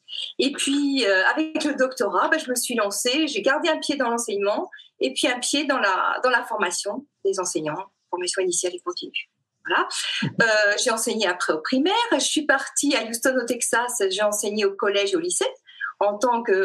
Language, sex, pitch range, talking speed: French, female, 225-350 Hz, 200 wpm